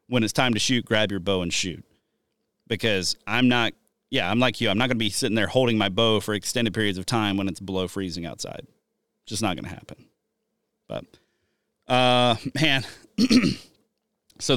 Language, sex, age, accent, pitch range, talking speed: English, male, 30-49, American, 105-130 Hz, 190 wpm